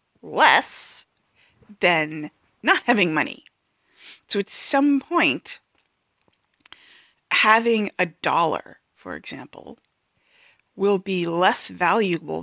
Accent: American